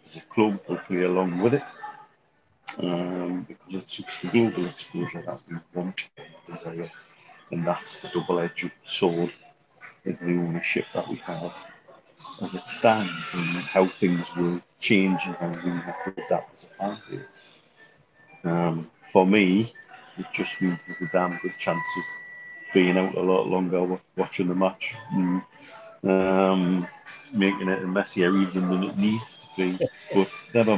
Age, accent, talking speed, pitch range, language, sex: 40-59, British, 160 wpm, 90-105 Hz, English, male